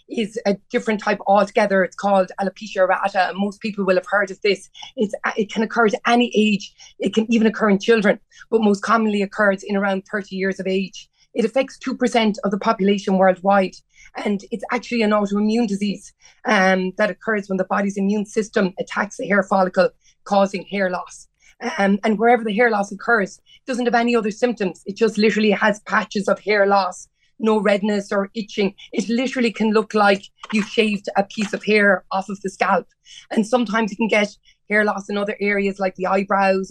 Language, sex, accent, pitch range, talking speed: English, female, Irish, 195-220 Hz, 195 wpm